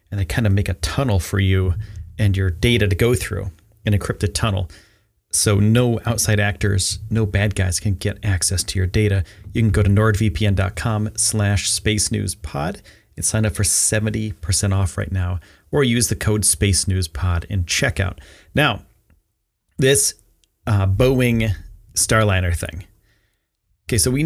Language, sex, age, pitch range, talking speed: English, male, 30-49, 95-120 Hz, 155 wpm